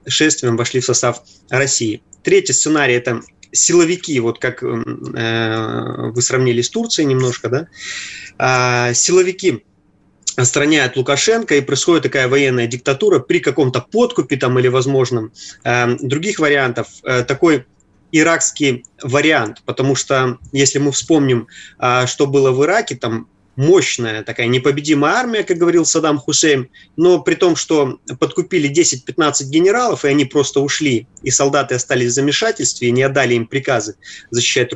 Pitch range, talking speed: 120-155 Hz, 140 wpm